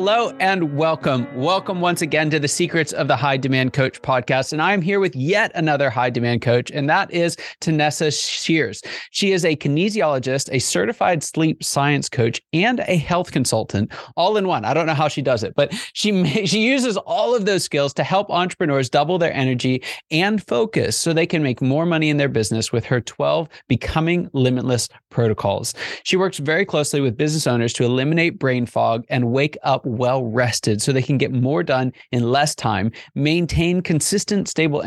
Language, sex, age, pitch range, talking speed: English, male, 30-49, 130-170 Hz, 195 wpm